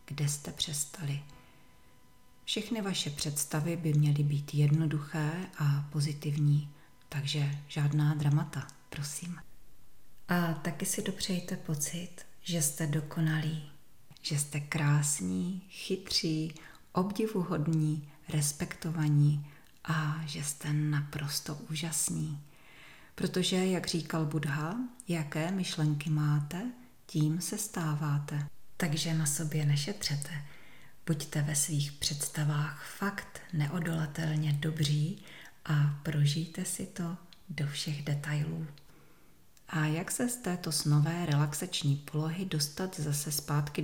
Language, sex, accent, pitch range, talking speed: Czech, female, native, 145-170 Hz, 100 wpm